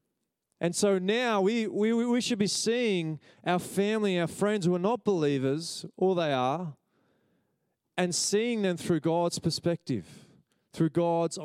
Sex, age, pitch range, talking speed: male, 20-39, 150-185 Hz, 145 wpm